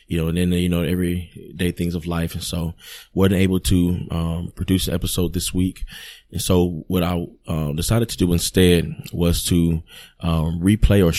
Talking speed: 190 wpm